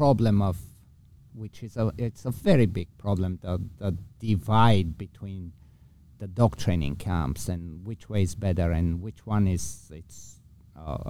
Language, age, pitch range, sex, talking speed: English, 50-69, 95-115 Hz, male, 155 wpm